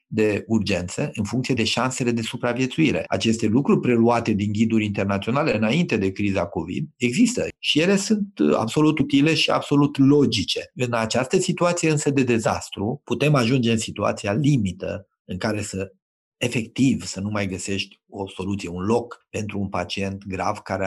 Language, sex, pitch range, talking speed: Romanian, male, 100-130 Hz, 160 wpm